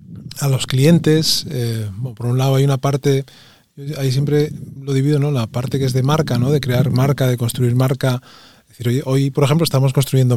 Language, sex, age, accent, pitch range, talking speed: Spanish, male, 20-39, Spanish, 125-150 Hz, 210 wpm